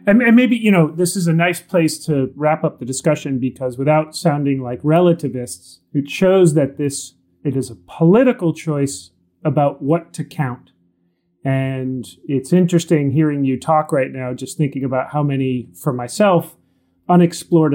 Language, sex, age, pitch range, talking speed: English, male, 30-49, 130-165 Hz, 160 wpm